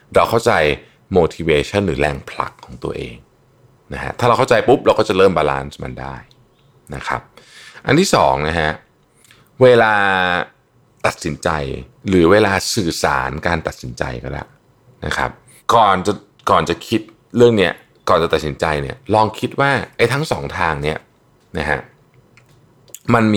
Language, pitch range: Thai, 75-120 Hz